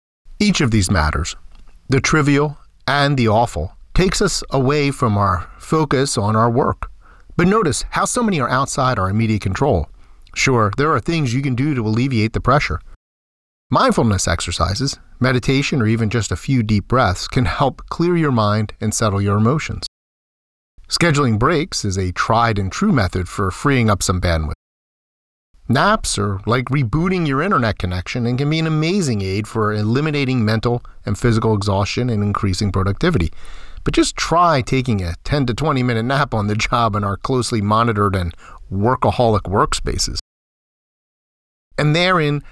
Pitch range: 95-140 Hz